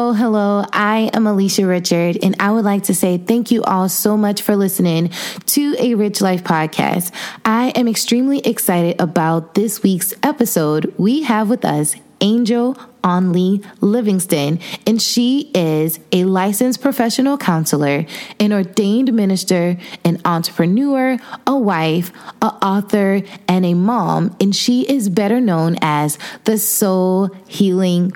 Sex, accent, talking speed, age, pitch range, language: female, American, 145 wpm, 20-39, 180-230 Hz, English